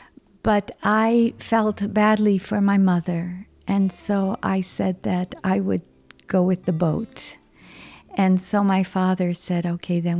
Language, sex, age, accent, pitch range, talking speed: Dutch, female, 50-69, American, 180-210 Hz, 145 wpm